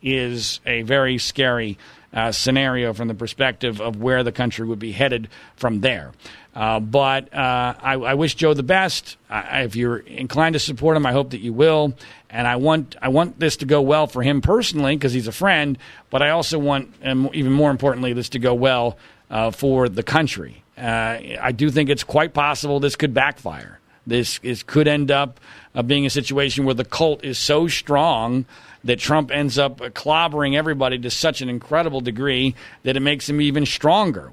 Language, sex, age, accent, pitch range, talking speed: English, male, 40-59, American, 125-150 Hz, 200 wpm